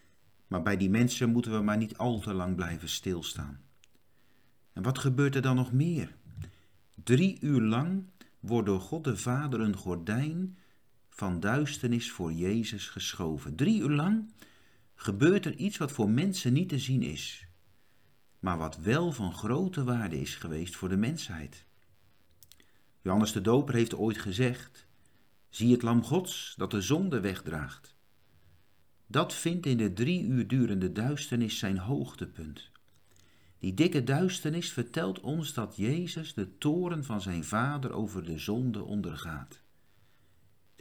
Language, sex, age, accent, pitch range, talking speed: Dutch, male, 50-69, Dutch, 90-130 Hz, 145 wpm